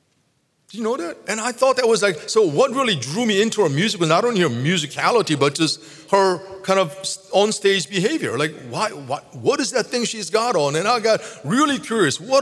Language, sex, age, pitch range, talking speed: English, male, 40-59, 155-205 Hz, 220 wpm